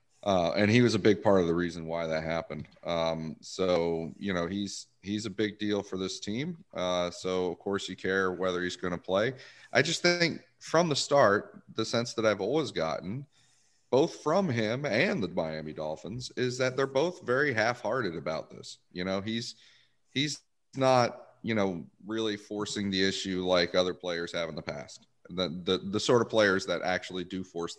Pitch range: 85-105 Hz